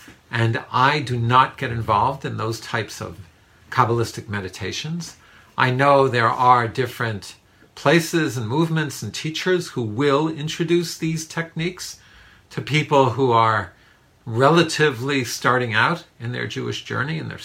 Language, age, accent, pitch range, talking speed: English, 50-69, American, 110-140 Hz, 140 wpm